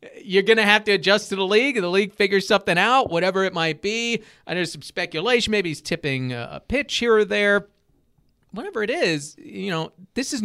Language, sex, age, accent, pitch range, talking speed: English, male, 40-59, American, 145-205 Hz, 220 wpm